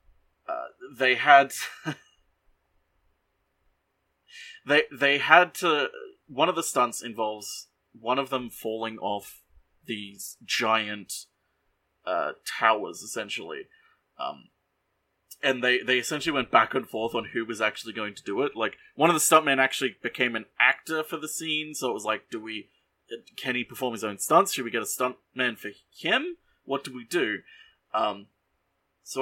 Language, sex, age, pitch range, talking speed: English, male, 30-49, 105-145 Hz, 155 wpm